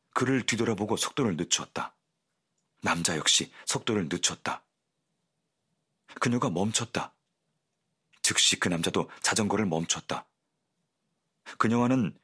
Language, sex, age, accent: Korean, male, 40-59, native